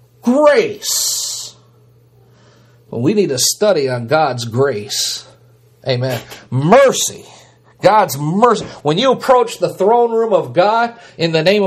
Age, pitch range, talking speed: 50-69, 130-215 Hz, 120 wpm